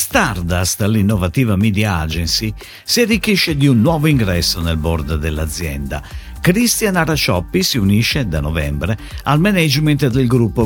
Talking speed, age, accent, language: 130 wpm, 50-69, native, Italian